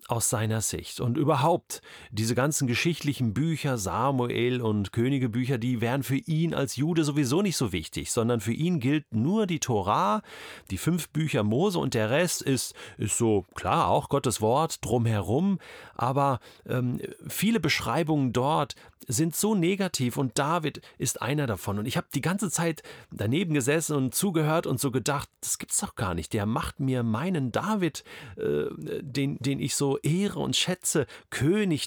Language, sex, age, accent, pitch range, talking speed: German, male, 40-59, German, 120-165 Hz, 170 wpm